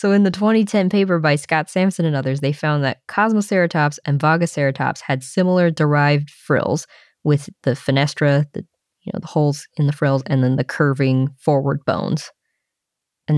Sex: female